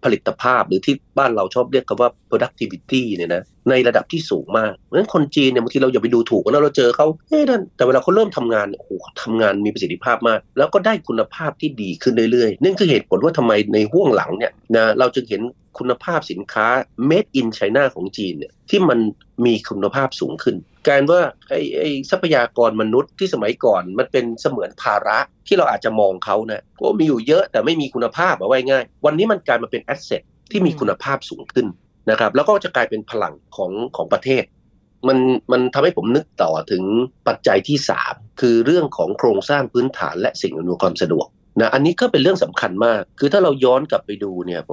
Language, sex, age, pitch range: Thai, male, 30-49, 115-145 Hz